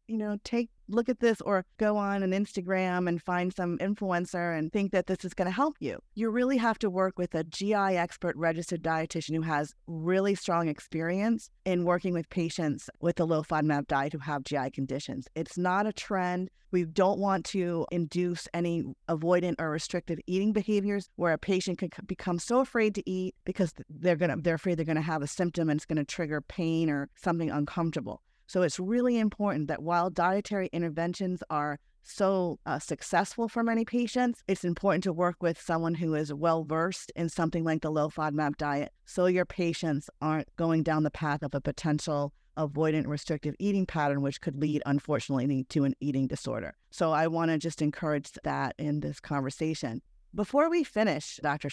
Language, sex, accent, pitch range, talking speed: English, female, American, 155-190 Hz, 190 wpm